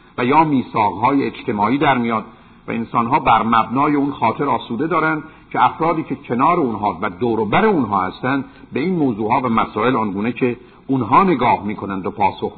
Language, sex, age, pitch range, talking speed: Persian, male, 50-69, 115-155 Hz, 190 wpm